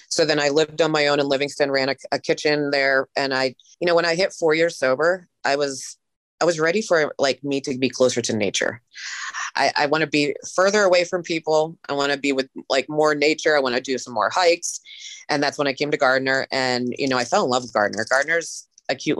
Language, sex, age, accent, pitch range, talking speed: English, female, 30-49, American, 125-155 Hz, 250 wpm